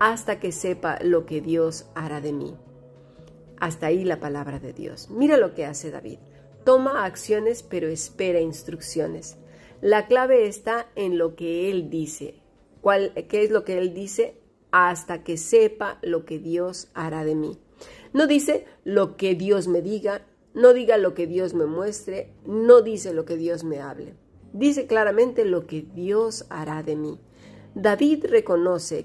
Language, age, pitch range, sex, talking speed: Spanish, 40-59, 165-220 Hz, female, 165 wpm